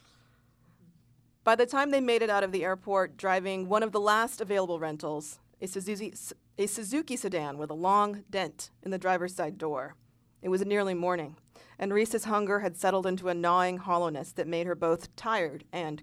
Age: 40-59